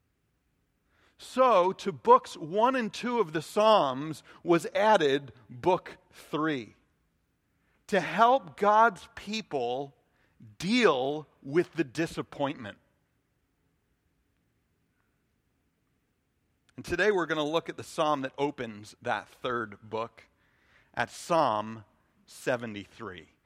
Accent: American